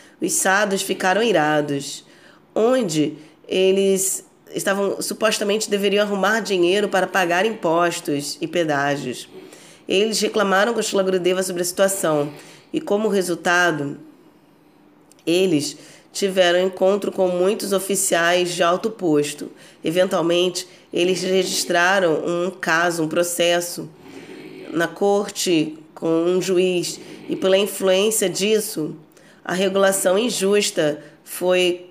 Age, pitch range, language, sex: 20-39, 170-195 Hz, Portuguese, female